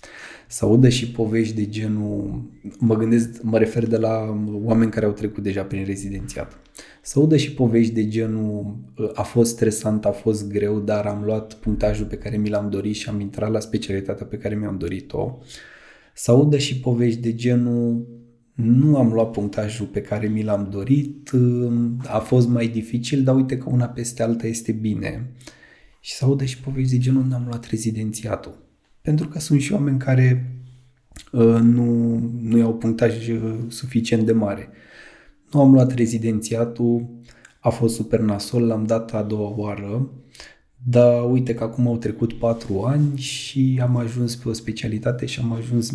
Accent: native